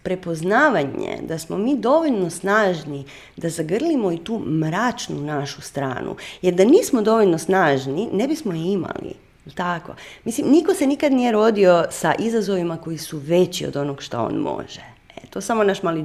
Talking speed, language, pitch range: 165 wpm, Croatian, 165-250 Hz